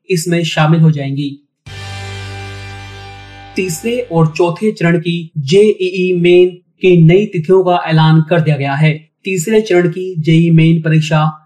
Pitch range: 155-185 Hz